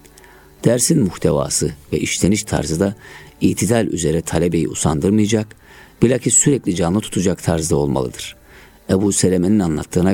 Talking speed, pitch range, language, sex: 110 wpm, 75-105 Hz, Turkish, male